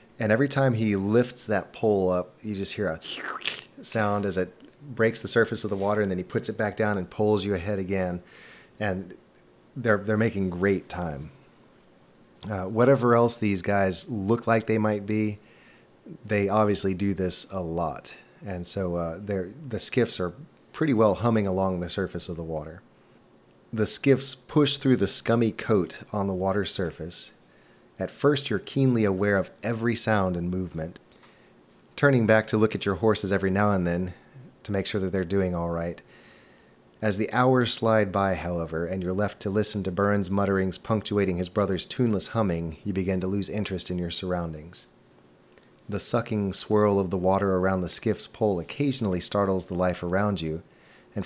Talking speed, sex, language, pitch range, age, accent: 180 wpm, male, English, 90-110 Hz, 30-49, American